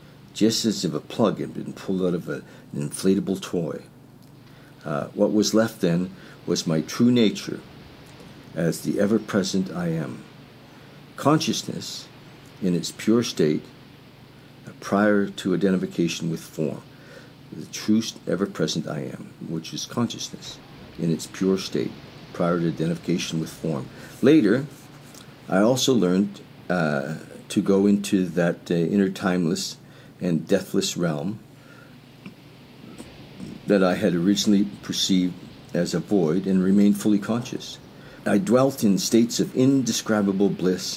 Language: English